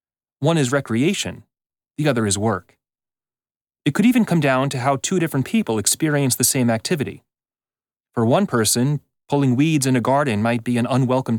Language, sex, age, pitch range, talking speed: English, male, 30-49, 95-140 Hz, 175 wpm